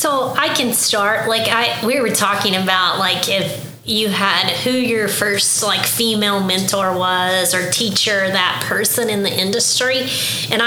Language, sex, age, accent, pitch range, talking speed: English, female, 30-49, American, 180-205 Hz, 165 wpm